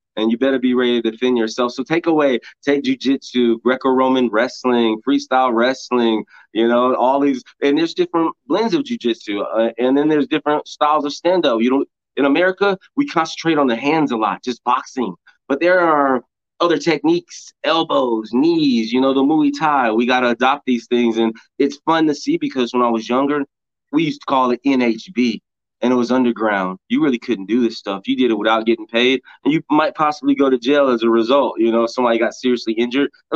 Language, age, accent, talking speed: English, 20-39, American, 205 wpm